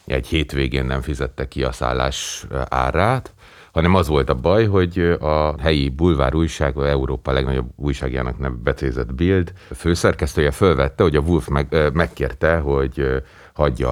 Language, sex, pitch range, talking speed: Hungarian, male, 65-80 Hz, 140 wpm